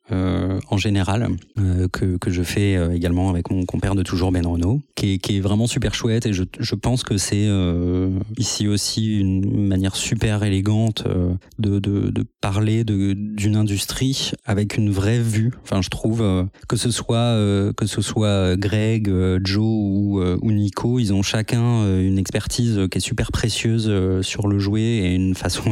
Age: 30-49